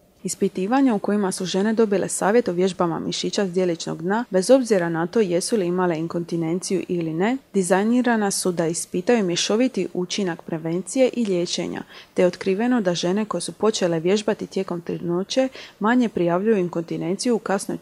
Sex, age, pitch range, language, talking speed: female, 30-49, 180-220 Hz, Croatian, 160 wpm